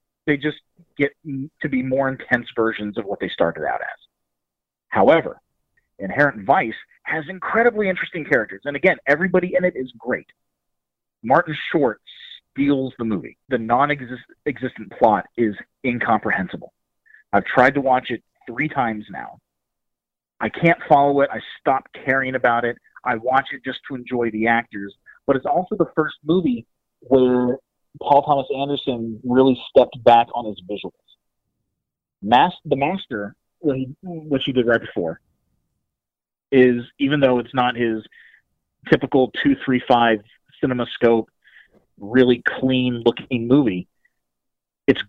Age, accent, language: 30-49, American, English